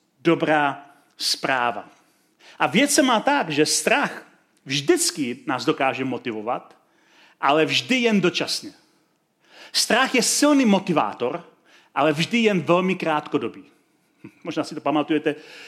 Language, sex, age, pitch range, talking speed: Czech, male, 40-59, 150-205 Hz, 115 wpm